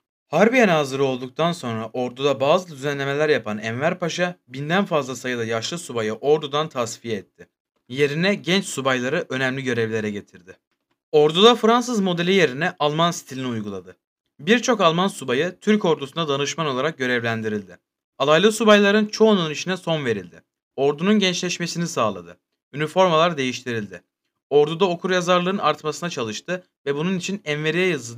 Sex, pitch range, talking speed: male, 130-180 Hz, 125 wpm